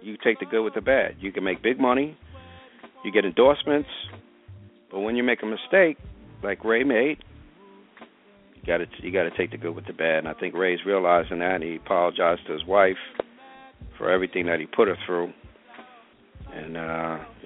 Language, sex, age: English, male, 50-69